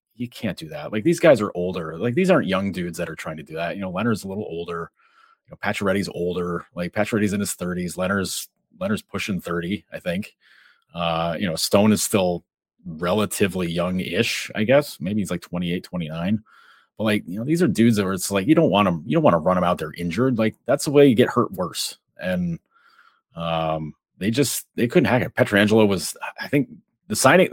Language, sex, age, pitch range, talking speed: English, male, 30-49, 85-110 Hz, 220 wpm